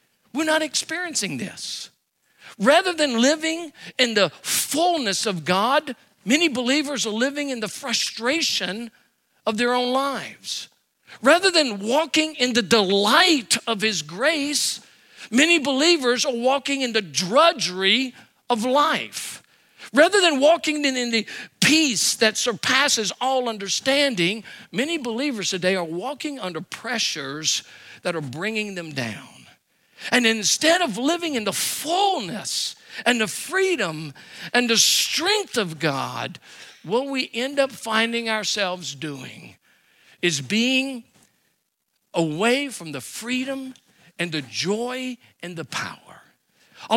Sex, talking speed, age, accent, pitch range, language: male, 125 wpm, 50-69, American, 205-285 Hz, English